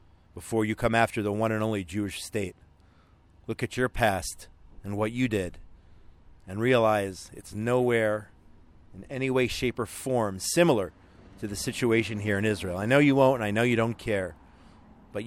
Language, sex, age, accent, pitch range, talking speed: English, male, 40-59, American, 95-125 Hz, 180 wpm